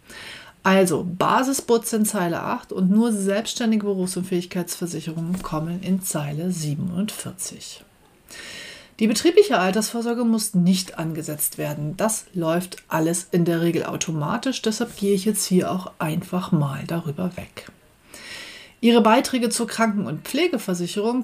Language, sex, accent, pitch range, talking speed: German, female, German, 175-225 Hz, 125 wpm